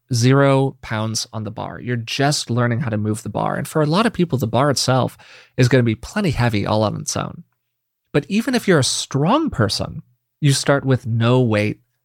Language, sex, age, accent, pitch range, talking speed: English, male, 30-49, American, 115-150 Hz, 220 wpm